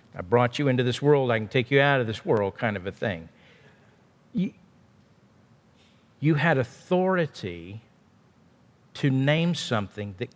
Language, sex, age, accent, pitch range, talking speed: English, male, 50-69, American, 115-160 Hz, 150 wpm